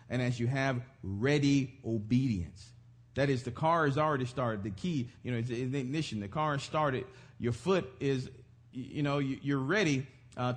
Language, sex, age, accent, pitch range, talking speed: English, male, 40-59, American, 125-170 Hz, 180 wpm